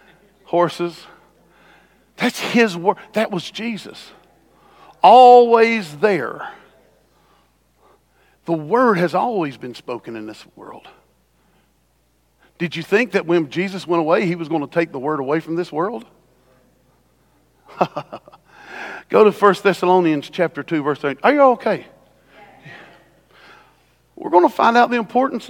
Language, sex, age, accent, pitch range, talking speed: English, male, 50-69, American, 170-260 Hz, 130 wpm